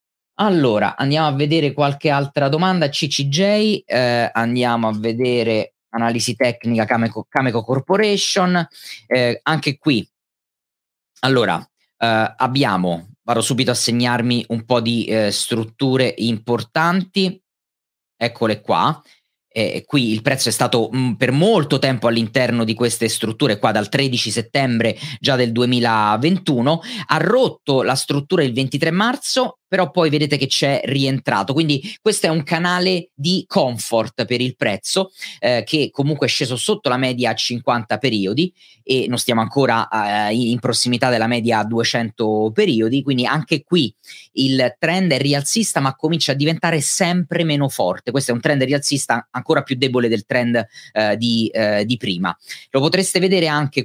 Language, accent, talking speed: Italian, native, 150 wpm